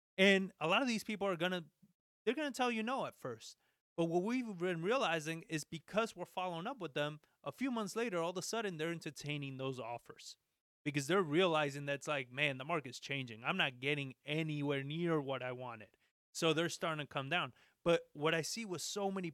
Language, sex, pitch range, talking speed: English, male, 150-190 Hz, 220 wpm